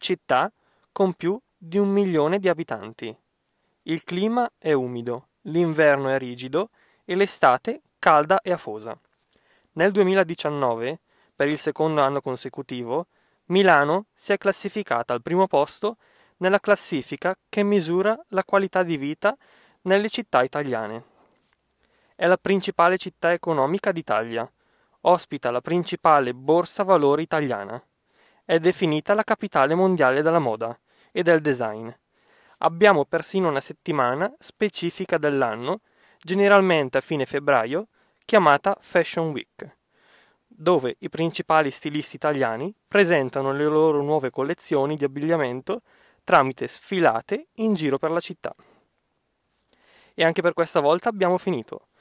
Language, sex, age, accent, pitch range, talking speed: Italian, male, 20-39, native, 140-195 Hz, 120 wpm